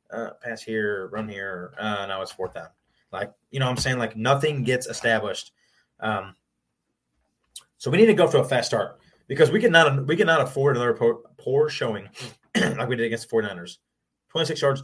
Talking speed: 195 wpm